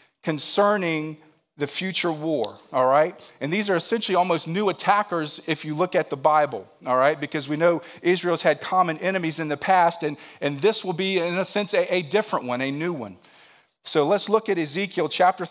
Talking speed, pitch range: 200 wpm, 145-185 Hz